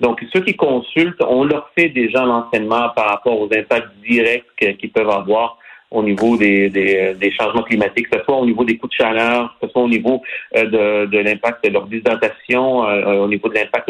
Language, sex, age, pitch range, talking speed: French, male, 40-59, 105-125 Hz, 205 wpm